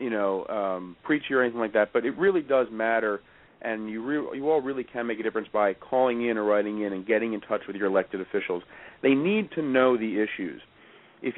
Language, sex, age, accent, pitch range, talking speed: English, male, 40-59, American, 115-140 Hz, 230 wpm